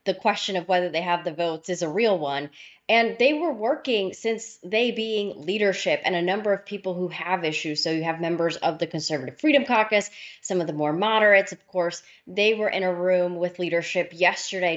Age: 20-39